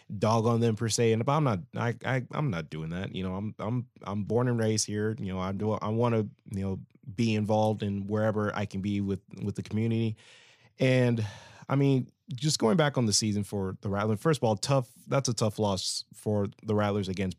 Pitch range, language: 100-115 Hz, English